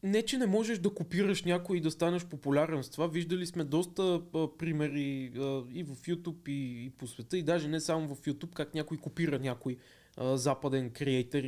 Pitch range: 150-205 Hz